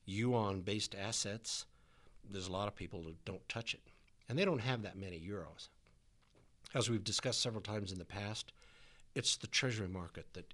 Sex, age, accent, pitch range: male, 60-79, American, 100-120 Hz